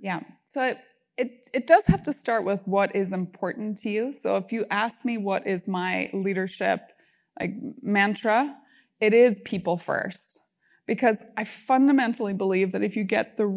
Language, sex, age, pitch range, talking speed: English, female, 20-39, 190-235 Hz, 175 wpm